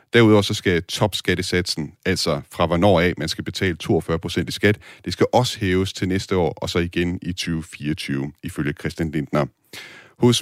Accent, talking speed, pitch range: native, 175 wpm, 85-105 Hz